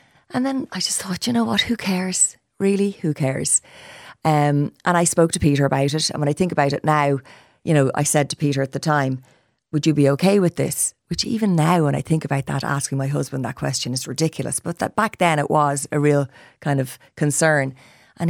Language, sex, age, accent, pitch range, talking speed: English, female, 30-49, Irish, 140-160 Hz, 230 wpm